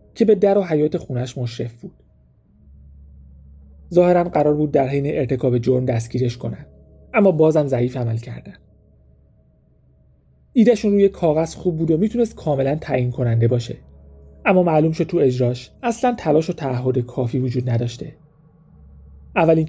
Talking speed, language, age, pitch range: 140 wpm, Persian, 30-49, 105-155 Hz